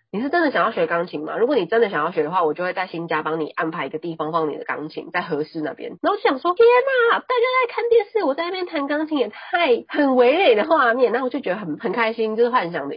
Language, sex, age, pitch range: Chinese, female, 30-49, 165-255 Hz